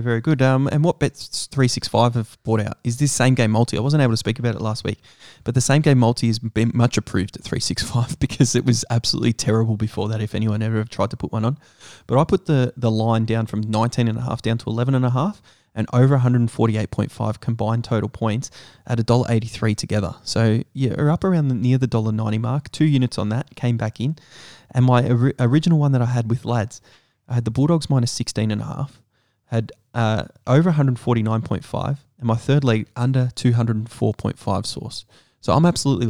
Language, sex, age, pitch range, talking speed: English, male, 20-39, 110-130 Hz, 220 wpm